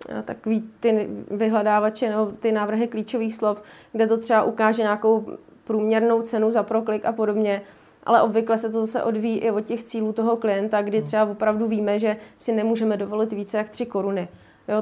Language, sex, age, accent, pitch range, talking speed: Czech, female, 20-39, native, 215-230 Hz, 180 wpm